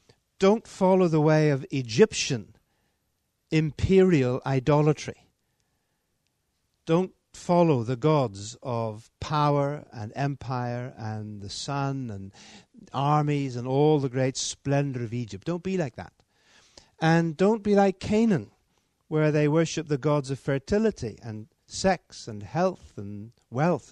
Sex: male